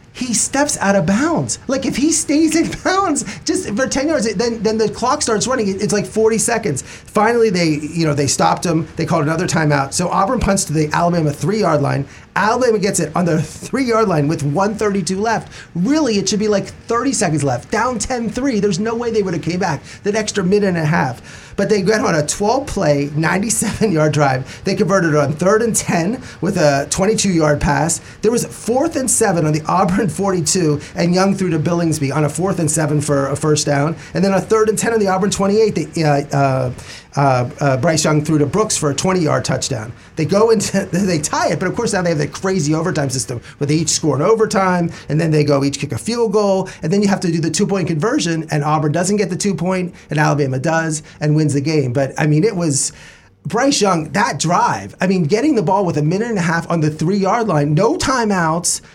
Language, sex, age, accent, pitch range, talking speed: English, male, 30-49, American, 150-210 Hz, 230 wpm